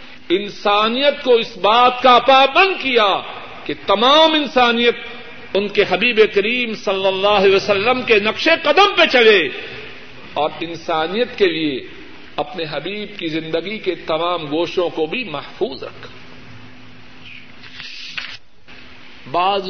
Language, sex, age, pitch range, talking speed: Urdu, male, 50-69, 160-235 Hz, 120 wpm